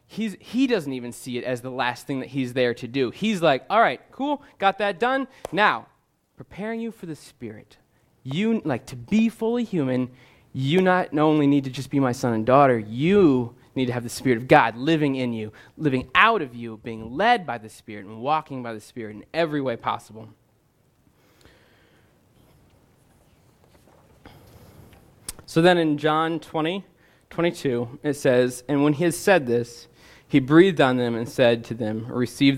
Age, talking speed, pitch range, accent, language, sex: 20-39, 180 wpm, 125-185 Hz, American, English, male